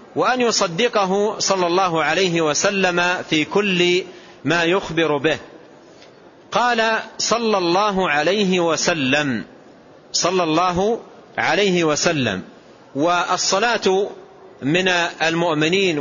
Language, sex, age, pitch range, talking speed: Arabic, male, 40-59, 160-200 Hz, 85 wpm